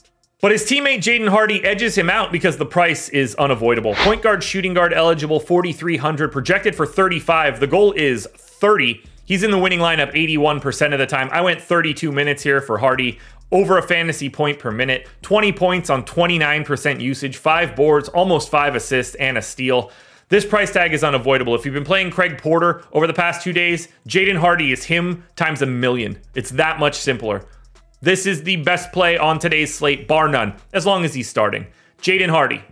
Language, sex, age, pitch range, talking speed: English, male, 30-49, 140-190 Hz, 195 wpm